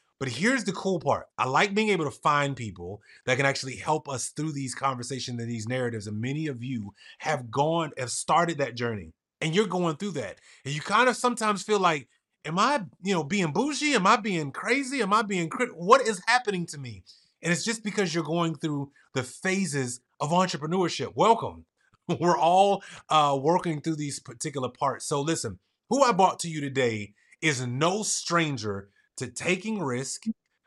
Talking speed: 190 wpm